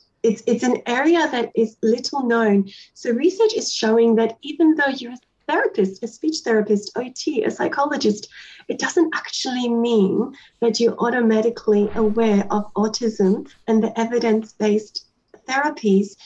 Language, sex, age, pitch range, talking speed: English, female, 30-49, 215-245 Hz, 140 wpm